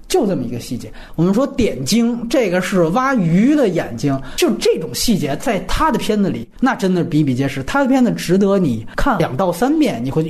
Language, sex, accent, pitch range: Chinese, male, native, 130-205 Hz